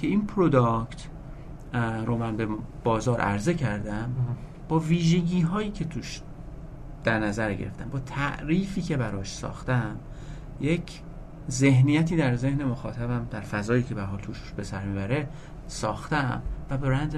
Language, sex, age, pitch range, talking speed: Persian, male, 40-59, 115-155 Hz, 135 wpm